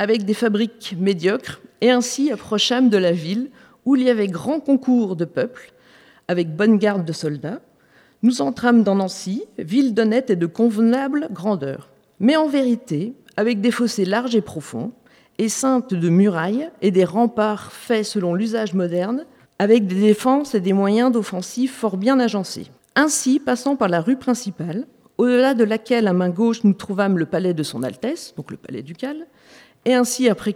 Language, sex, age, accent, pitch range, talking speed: French, female, 50-69, French, 190-245 Hz, 175 wpm